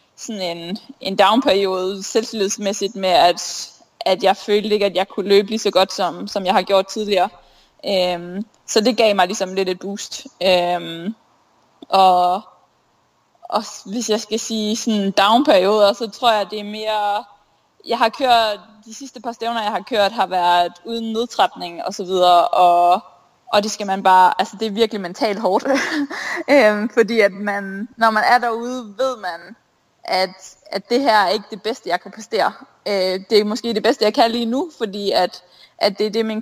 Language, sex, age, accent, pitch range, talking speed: Danish, female, 20-39, native, 185-225 Hz, 190 wpm